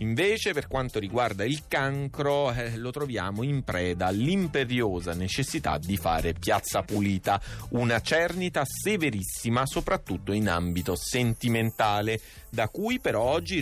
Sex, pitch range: male, 95-140 Hz